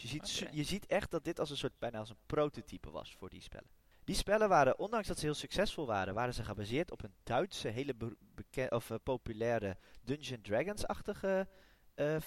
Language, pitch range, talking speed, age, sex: Dutch, 110-155 Hz, 210 wpm, 20-39, male